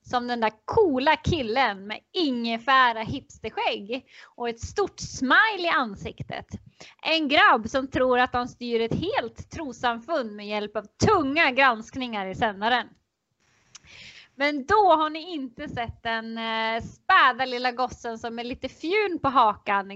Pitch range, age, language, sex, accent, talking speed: 230-315 Hz, 20-39, Swedish, female, native, 140 wpm